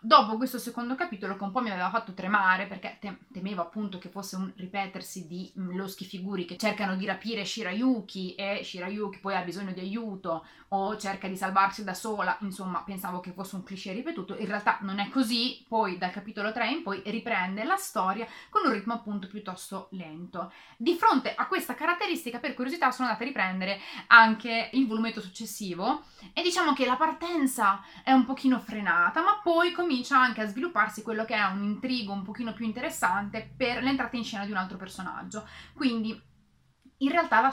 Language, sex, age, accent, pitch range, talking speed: Italian, female, 30-49, native, 195-260 Hz, 190 wpm